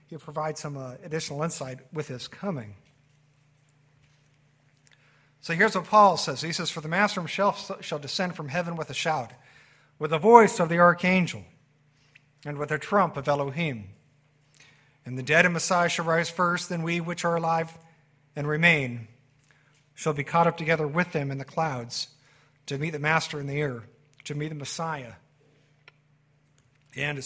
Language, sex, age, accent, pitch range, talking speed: English, male, 50-69, American, 145-175 Hz, 165 wpm